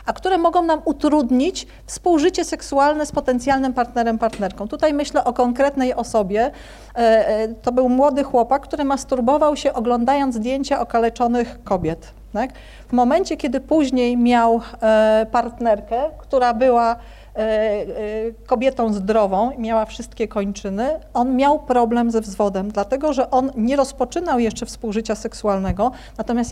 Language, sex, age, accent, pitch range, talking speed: Polish, female, 40-59, native, 225-280 Hz, 120 wpm